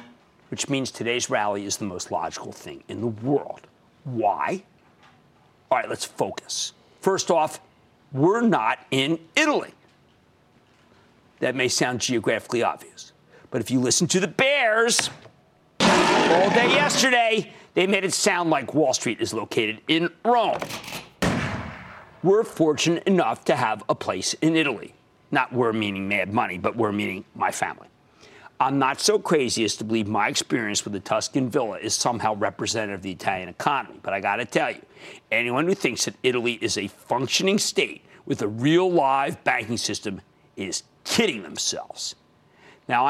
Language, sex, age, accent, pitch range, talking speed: English, male, 50-69, American, 120-190 Hz, 155 wpm